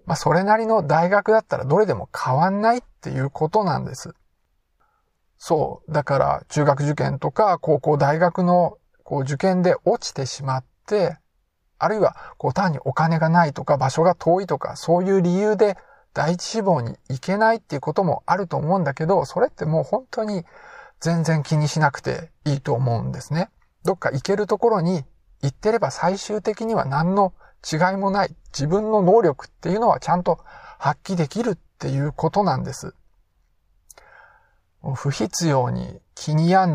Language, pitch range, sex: Japanese, 145-190 Hz, male